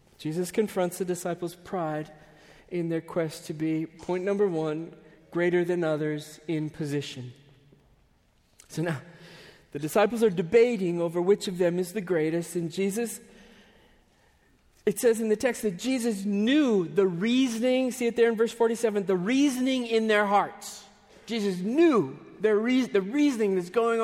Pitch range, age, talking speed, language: 165-225 Hz, 40-59, 150 wpm, English